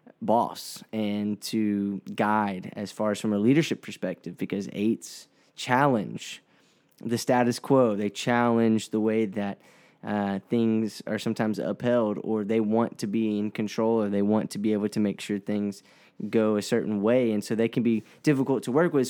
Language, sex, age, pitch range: English, male, 10-29, 105-125 Hz